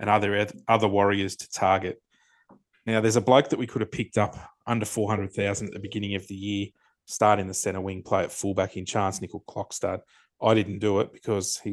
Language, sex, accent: English, male, Australian